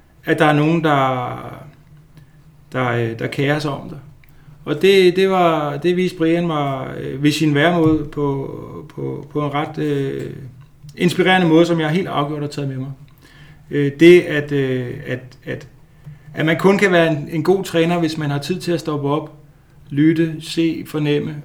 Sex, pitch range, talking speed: male, 135-155 Hz, 180 wpm